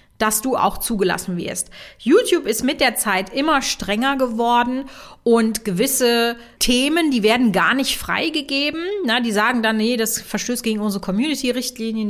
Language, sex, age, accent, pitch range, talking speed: German, female, 30-49, German, 195-245 Hz, 150 wpm